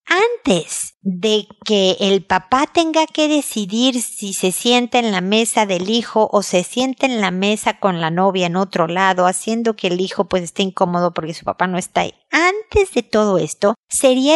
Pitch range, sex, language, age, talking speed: 180-255 Hz, female, Spanish, 50-69, 190 wpm